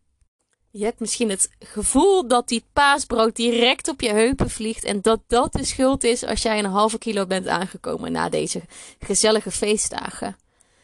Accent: Dutch